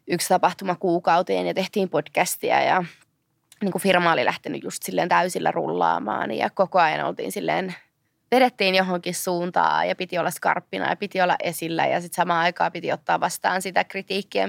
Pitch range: 160-185 Hz